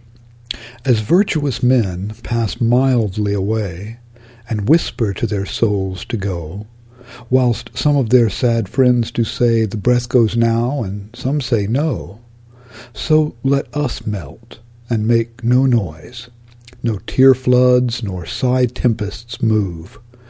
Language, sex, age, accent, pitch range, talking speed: English, male, 60-79, American, 115-125 Hz, 125 wpm